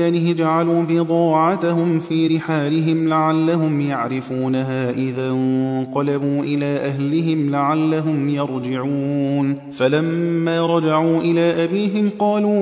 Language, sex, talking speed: Arabic, male, 80 wpm